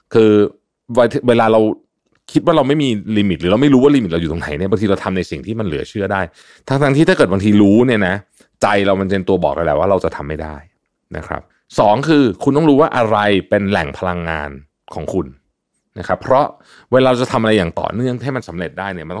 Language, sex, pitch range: Thai, male, 90-125 Hz